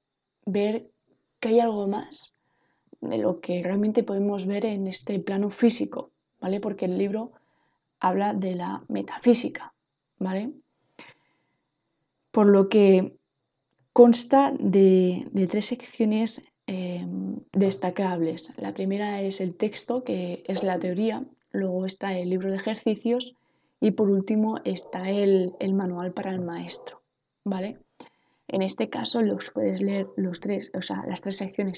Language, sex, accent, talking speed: Spanish, female, Spanish, 130 wpm